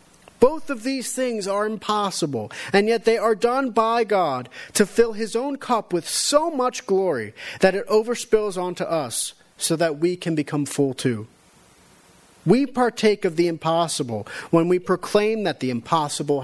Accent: American